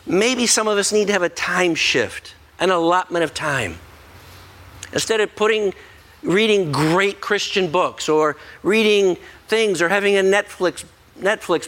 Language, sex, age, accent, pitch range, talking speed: English, male, 50-69, American, 190-240 Hz, 150 wpm